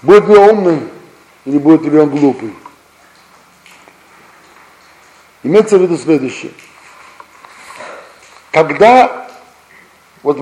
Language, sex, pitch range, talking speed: Russian, male, 180-230 Hz, 85 wpm